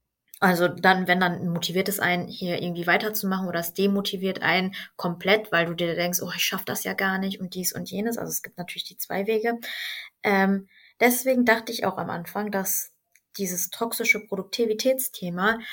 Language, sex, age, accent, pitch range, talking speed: German, female, 20-39, German, 180-220 Hz, 185 wpm